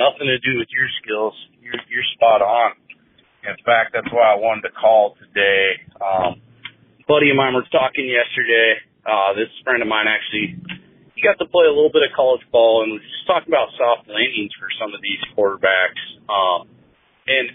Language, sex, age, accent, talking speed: English, male, 30-49, American, 195 wpm